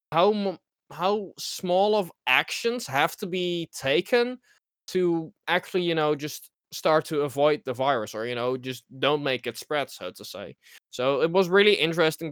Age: 20-39